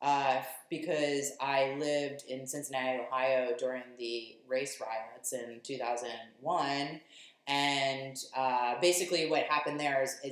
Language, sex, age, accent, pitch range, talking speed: English, female, 20-39, American, 125-150 Hz, 120 wpm